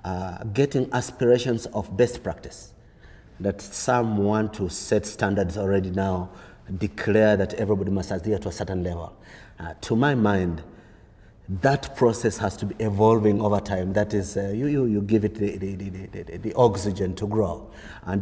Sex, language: male, English